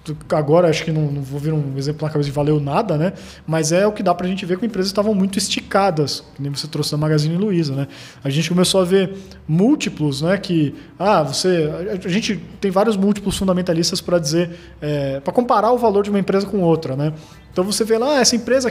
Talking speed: 235 wpm